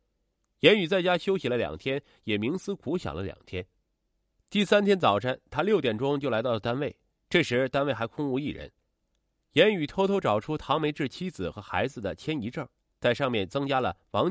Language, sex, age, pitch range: Chinese, male, 30-49, 105-155 Hz